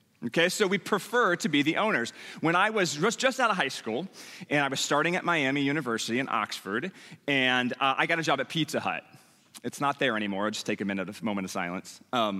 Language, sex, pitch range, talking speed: English, male, 135-175 Hz, 230 wpm